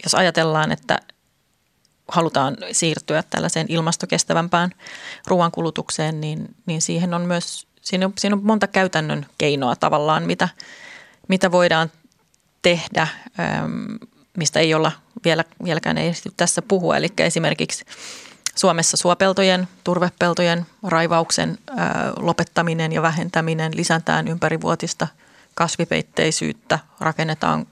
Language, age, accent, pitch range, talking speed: Finnish, 30-49, native, 160-185 Hz, 100 wpm